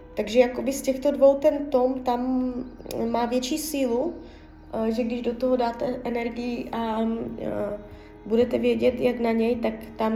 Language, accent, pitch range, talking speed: Czech, native, 200-250 Hz, 150 wpm